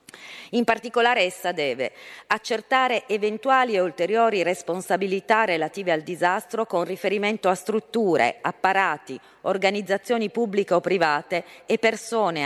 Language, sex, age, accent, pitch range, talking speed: Italian, female, 40-59, native, 170-220 Hz, 110 wpm